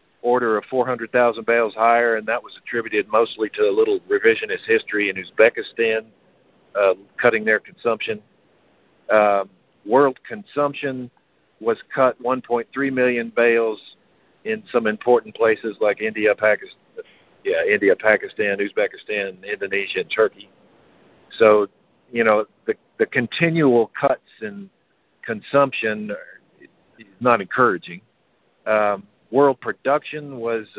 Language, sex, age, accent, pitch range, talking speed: English, male, 50-69, American, 105-170 Hz, 115 wpm